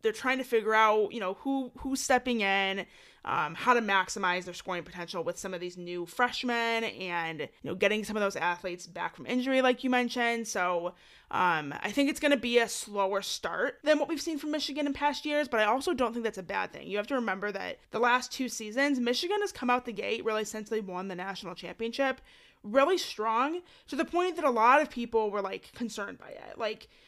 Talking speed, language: 235 wpm, English